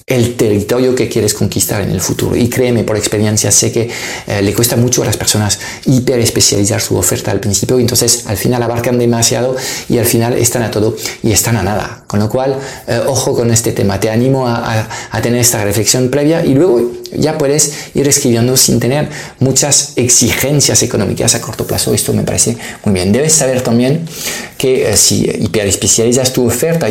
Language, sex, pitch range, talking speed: Spanish, male, 110-125 Hz, 195 wpm